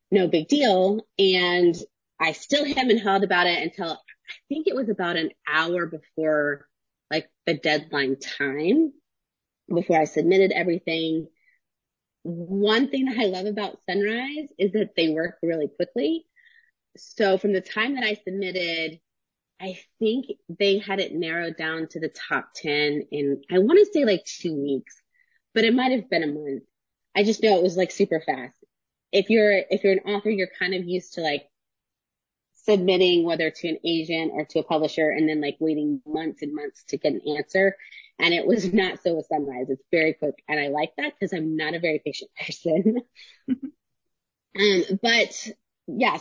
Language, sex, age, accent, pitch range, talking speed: English, female, 30-49, American, 160-215 Hz, 175 wpm